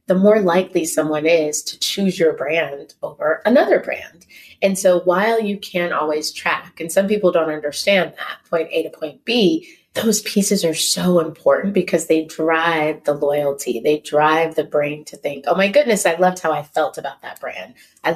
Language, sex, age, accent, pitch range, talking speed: English, female, 30-49, American, 155-195 Hz, 190 wpm